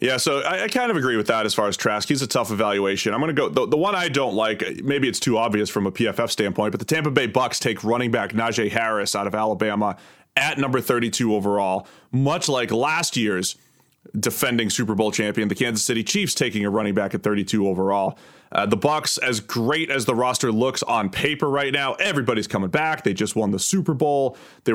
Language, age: English, 30-49